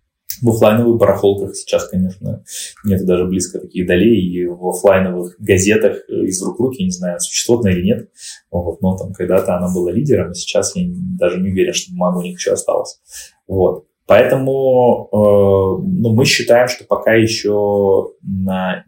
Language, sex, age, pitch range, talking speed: Russian, male, 20-39, 95-135 Hz, 165 wpm